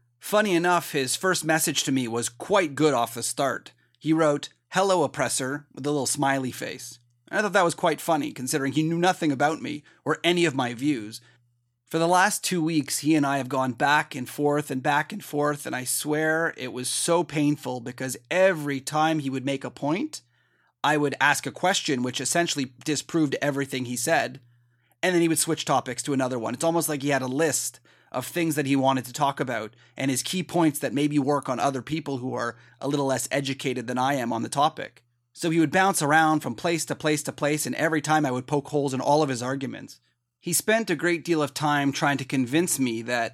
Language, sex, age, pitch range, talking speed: English, male, 30-49, 130-160 Hz, 225 wpm